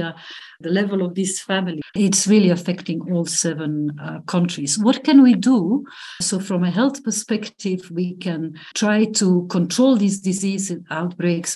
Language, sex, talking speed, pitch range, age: English, female, 150 wpm, 165-195 Hz, 50-69